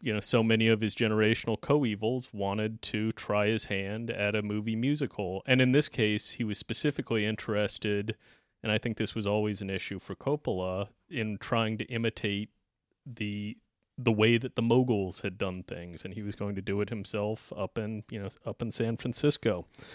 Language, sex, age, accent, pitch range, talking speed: English, male, 30-49, American, 105-125 Hz, 195 wpm